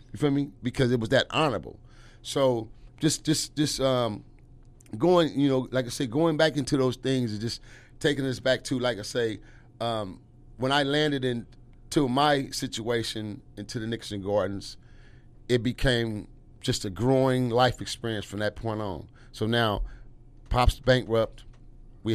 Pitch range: 110-130 Hz